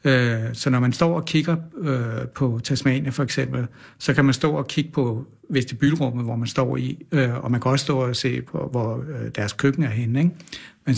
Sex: male